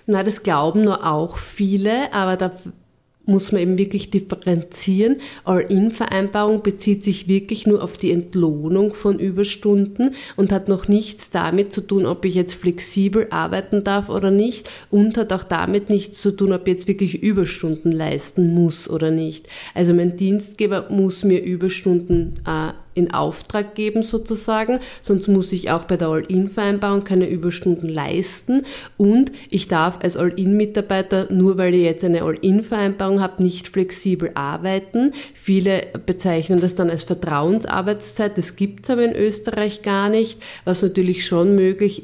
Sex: female